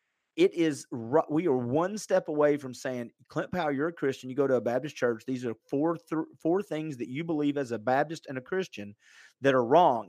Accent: American